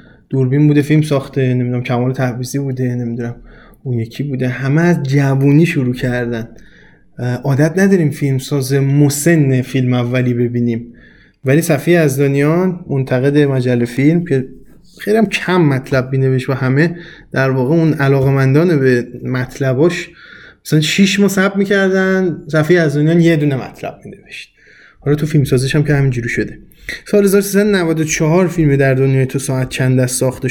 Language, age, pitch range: Persian, 20-39, 130-160 Hz